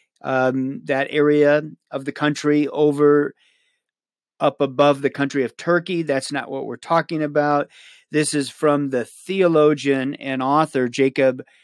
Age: 40-59